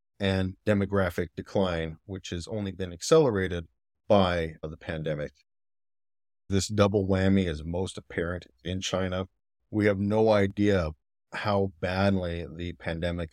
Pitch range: 85-100 Hz